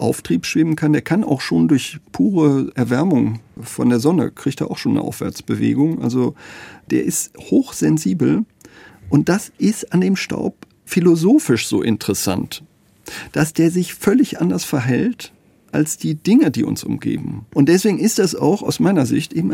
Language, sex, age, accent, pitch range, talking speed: German, male, 40-59, German, 130-210 Hz, 165 wpm